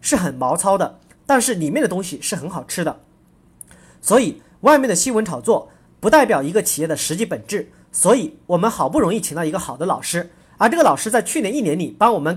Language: Chinese